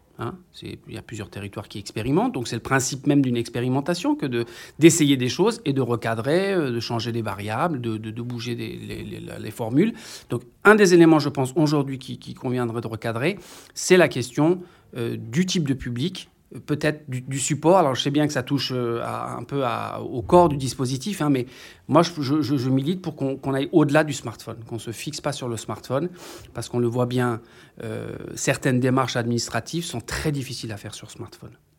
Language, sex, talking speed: French, male, 215 wpm